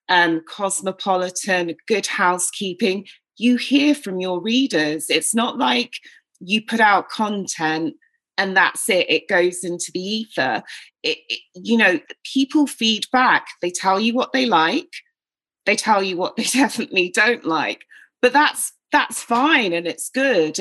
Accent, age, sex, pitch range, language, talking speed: British, 30-49, female, 170-235 Hz, English, 150 wpm